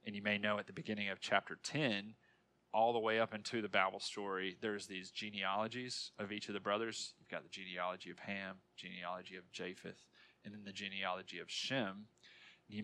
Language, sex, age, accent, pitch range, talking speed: English, male, 30-49, American, 95-110 Hz, 195 wpm